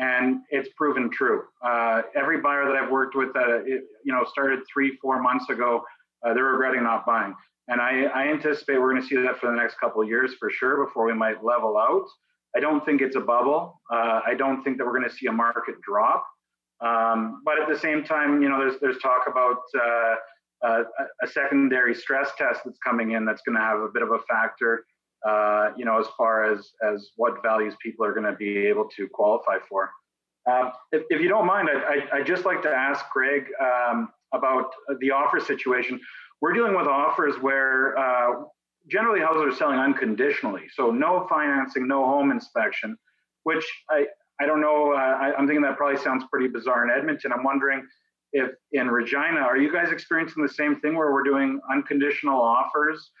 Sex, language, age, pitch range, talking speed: male, English, 30-49, 120-145 Hz, 205 wpm